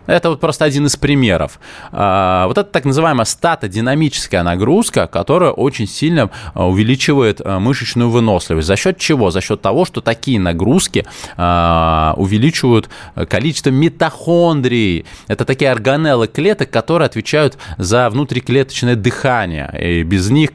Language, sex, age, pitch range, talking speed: Russian, male, 20-39, 95-135 Hz, 125 wpm